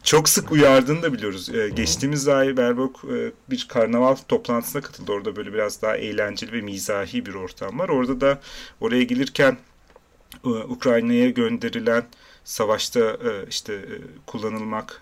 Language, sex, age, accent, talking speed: Turkish, male, 40-59, native, 125 wpm